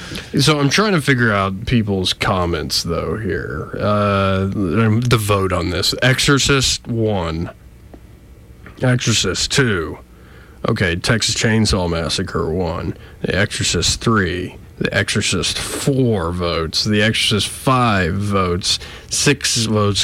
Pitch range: 100-145 Hz